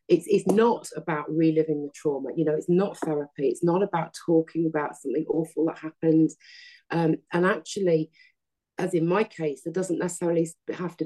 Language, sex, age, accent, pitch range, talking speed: English, female, 30-49, British, 155-180 Hz, 180 wpm